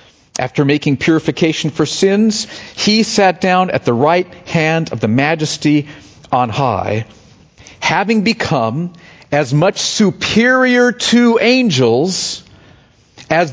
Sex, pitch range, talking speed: male, 115-165 Hz, 110 wpm